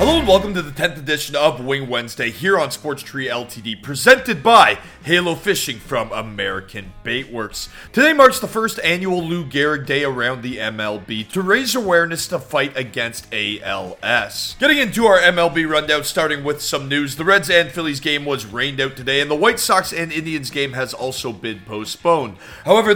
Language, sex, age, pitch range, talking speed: English, male, 30-49, 120-170 Hz, 180 wpm